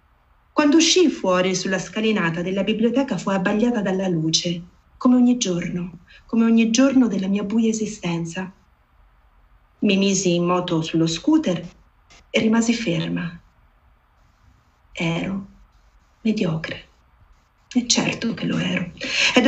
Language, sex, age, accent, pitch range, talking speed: Italian, female, 40-59, native, 175-235 Hz, 115 wpm